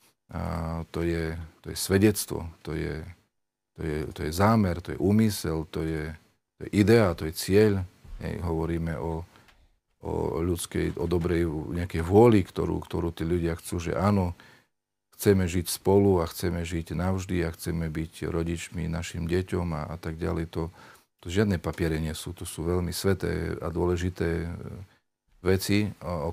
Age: 40-59